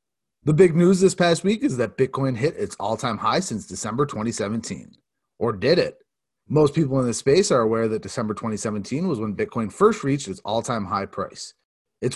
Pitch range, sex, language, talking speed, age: 110-145 Hz, male, English, 190 wpm, 30-49